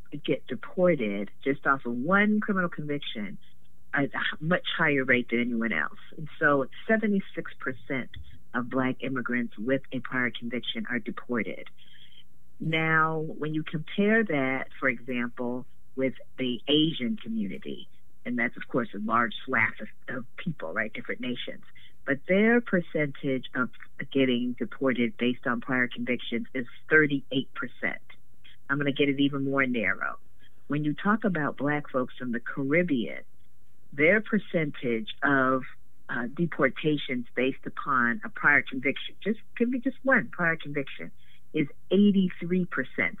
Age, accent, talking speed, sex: 50-69, American, 135 wpm, female